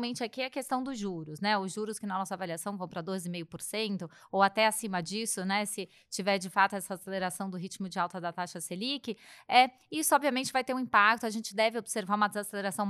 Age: 20-39